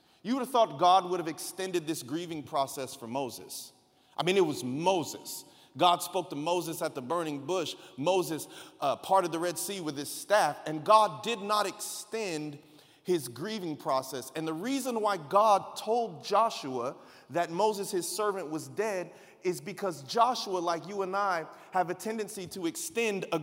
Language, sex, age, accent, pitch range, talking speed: English, male, 40-59, American, 170-220 Hz, 170 wpm